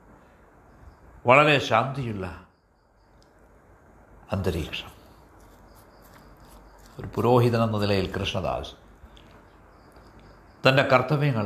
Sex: male